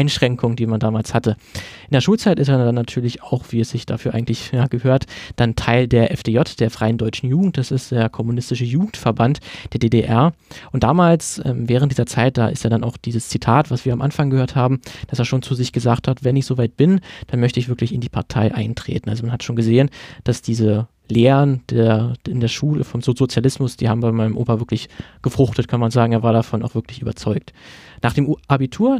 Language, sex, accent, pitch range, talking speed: German, male, German, 115-135 Hz, 220 wpm